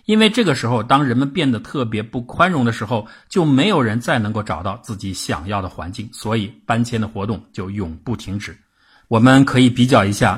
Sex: male